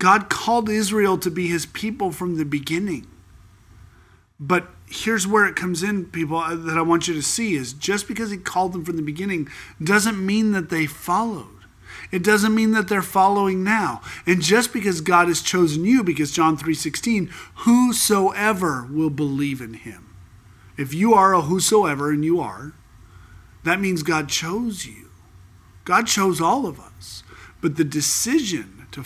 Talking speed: 165 wpm